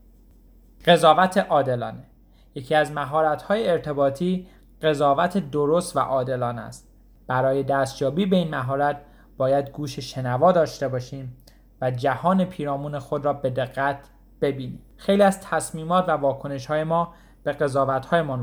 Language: Persian